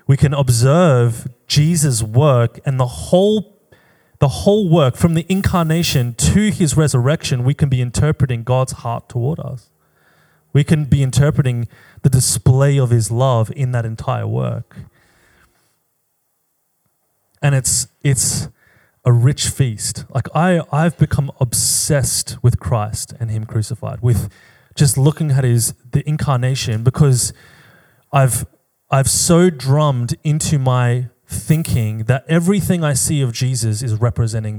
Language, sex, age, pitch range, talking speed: English, male, 20-39, 120-150 Hz, 135 wpm